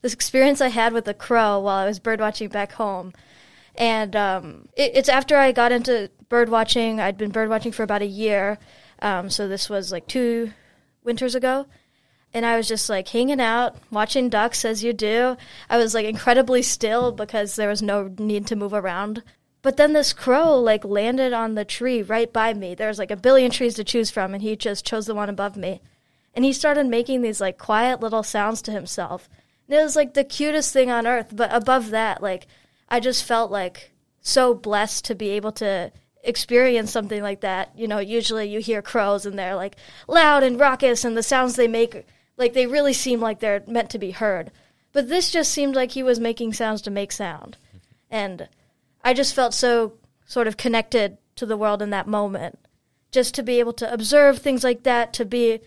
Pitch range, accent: 210-250 Hz, American